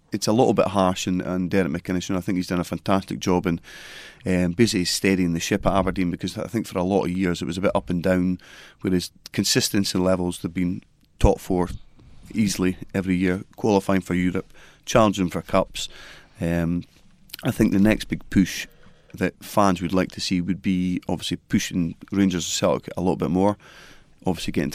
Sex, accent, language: male, British, English